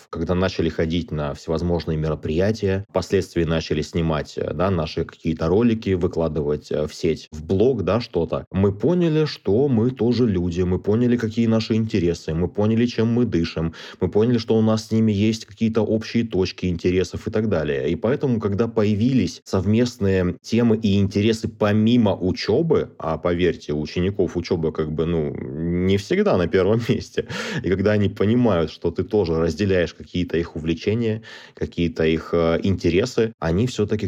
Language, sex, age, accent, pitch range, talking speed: Russian, male, 20-39, native, 85-110 Hz, 155 wpm